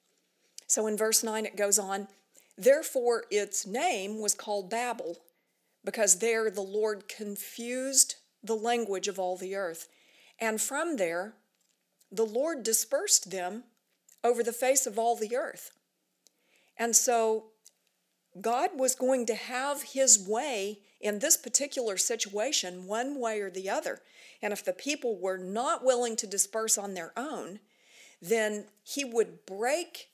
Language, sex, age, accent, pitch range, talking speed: English, female, 50-69, American, 200-255 Hz, 145 wpm